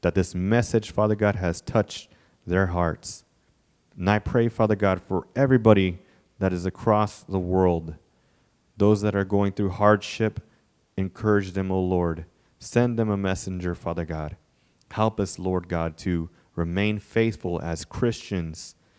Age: 30-49